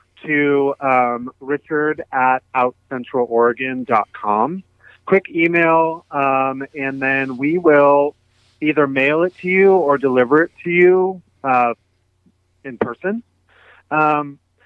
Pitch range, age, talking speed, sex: 115-145 Hz, 30-49, 105 wpm, male